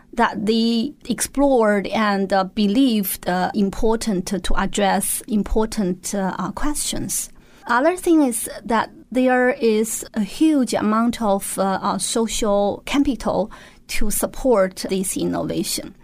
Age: 30-49